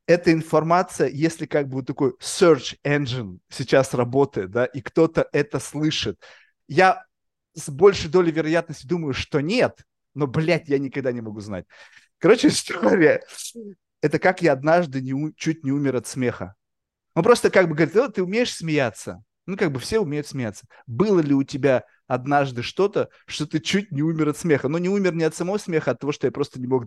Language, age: Russian, 20-39